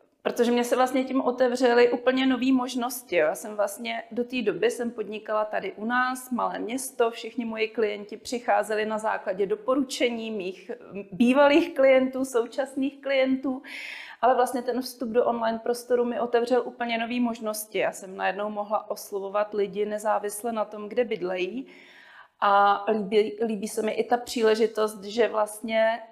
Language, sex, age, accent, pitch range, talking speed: Czech, female, 30-49, native, 215-245 Hz, 155 wpm